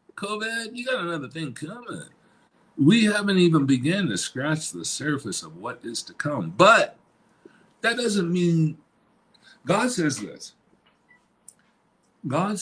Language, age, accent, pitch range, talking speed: English, 60-79, American, 120-170 Hz, 130 wpm